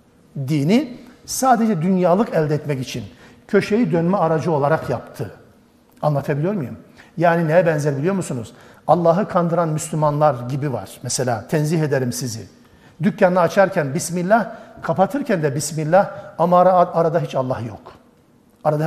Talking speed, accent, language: 125 wpm, native, Turkish